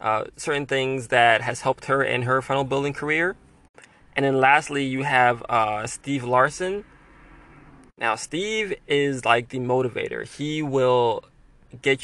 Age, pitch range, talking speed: 20-39, 125-145 Hz, 145 wpm